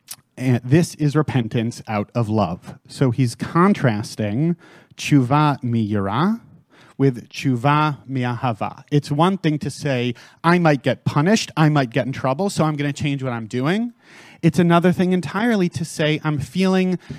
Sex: male